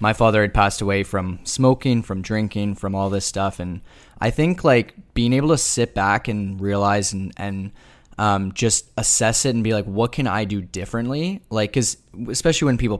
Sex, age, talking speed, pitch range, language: male, 10-29, 200 wpm, 100-115 Hz, English